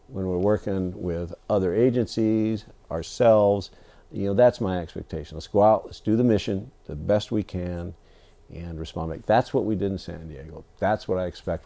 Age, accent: 50-69, American